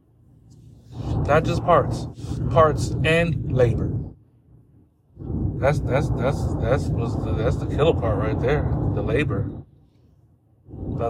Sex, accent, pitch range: male, American, 110-150 Hz